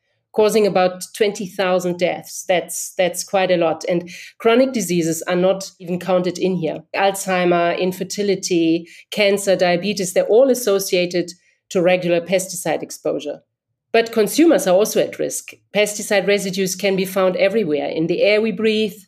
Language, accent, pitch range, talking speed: English, German, 175-205 Hz, 145 wpm